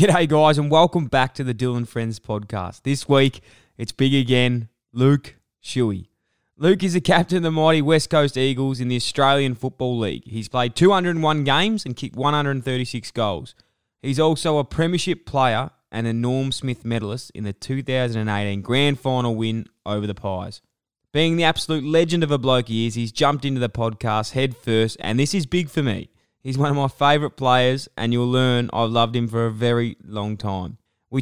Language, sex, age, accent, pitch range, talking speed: English, male, 20-39, Australian, 115-150 Hz, 190 wpm